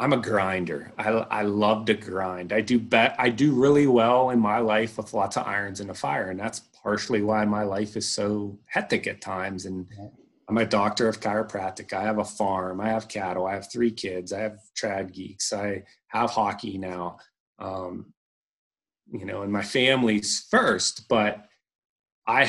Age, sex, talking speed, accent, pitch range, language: 30-49, male, 185 wpm, American, 100-120 Hz, English